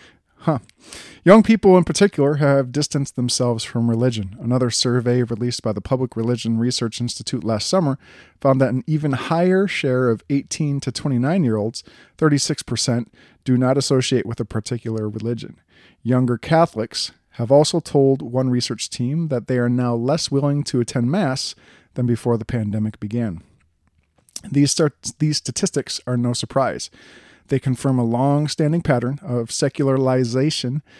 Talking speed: 145 wpm